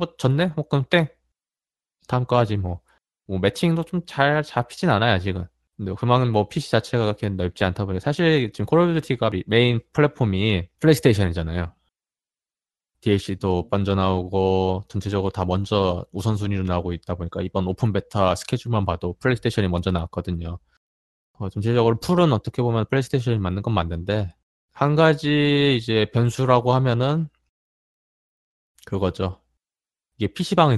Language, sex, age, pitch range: Korean, male, 20-39, 95-130 Hz